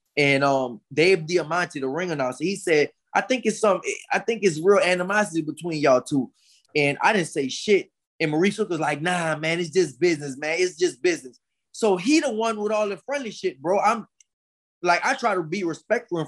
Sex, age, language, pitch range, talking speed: male, 20-39, English, 160-200 Hz, 215 wpm